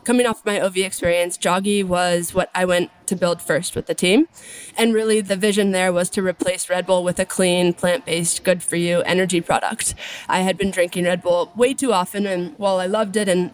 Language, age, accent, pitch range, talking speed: English, 20-39, American, 180-210 Hz, 215 wpm